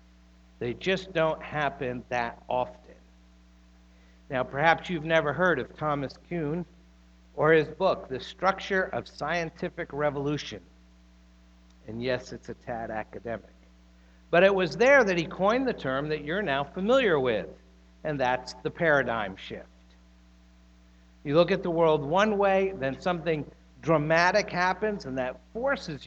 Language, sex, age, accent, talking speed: English, male, 60-79, American, 140 wpm